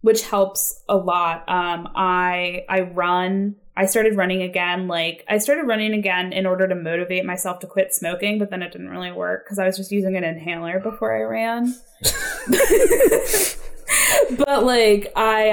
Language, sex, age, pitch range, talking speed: English, female, 10-29, 170-210 Hz, 170 wpm